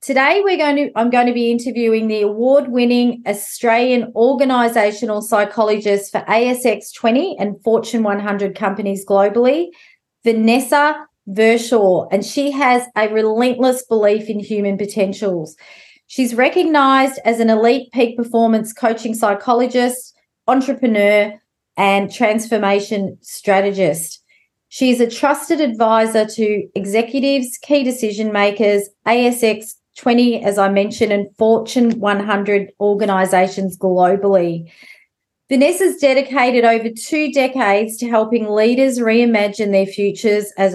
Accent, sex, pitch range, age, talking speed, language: Australian, female, 200-245 Hz, 30-49, 115 wpm, English